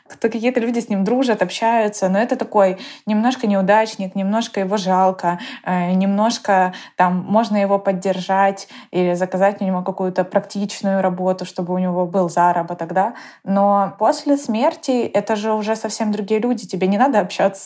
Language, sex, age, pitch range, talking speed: Ukrainian, female, 20-39, 190-225 Hz, 155 wpm